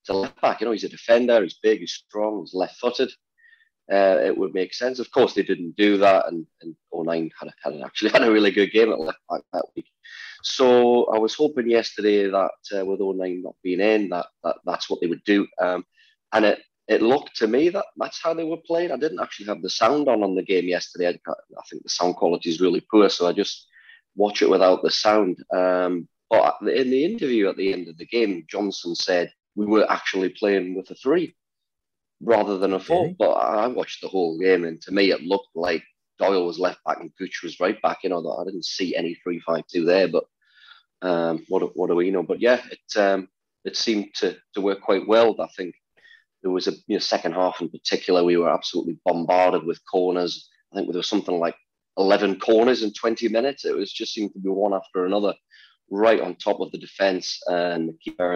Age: 30-49